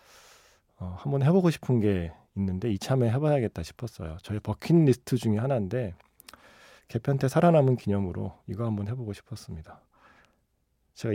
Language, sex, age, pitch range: Korean, male, 40-59, 95-130 Hz